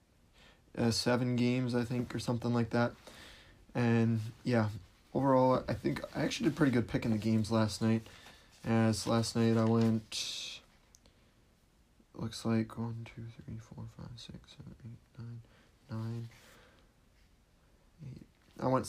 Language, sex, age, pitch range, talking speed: English, male, 30-49, 110-125 Hz, 140 wpm